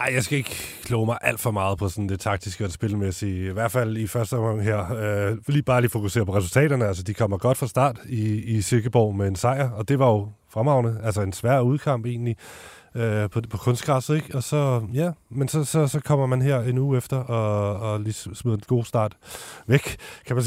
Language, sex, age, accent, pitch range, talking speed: Danish, male, 30-49, native, 100-125 Hz, 230 wpm